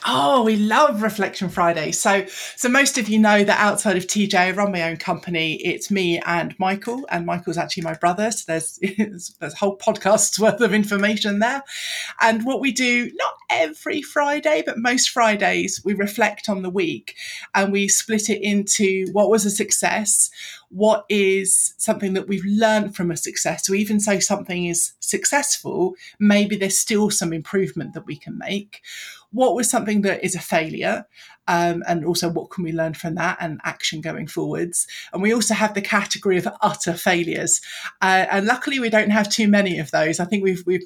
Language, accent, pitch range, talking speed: English, British, 175-215 Hz, 190 wpm